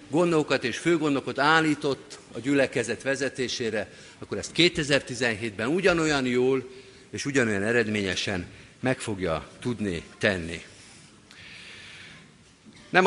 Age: 50-69